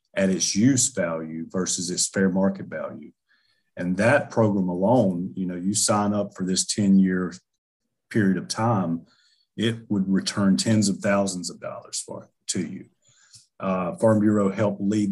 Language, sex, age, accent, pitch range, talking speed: English, male, 40-59, American, 95-105 Hz, 165 wpm